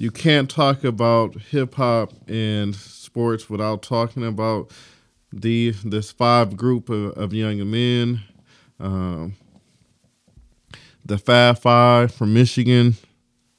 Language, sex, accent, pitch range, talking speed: English, male, American, 105-120 Hz, 110 wpm